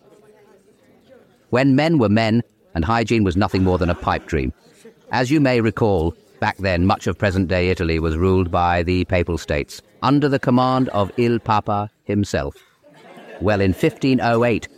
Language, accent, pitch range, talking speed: English, British, 90-115 Hz, 160 wpm